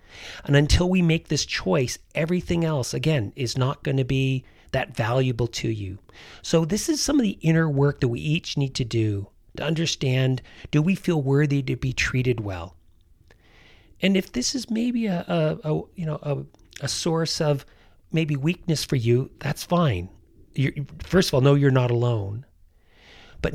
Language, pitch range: English, 110-155 Hz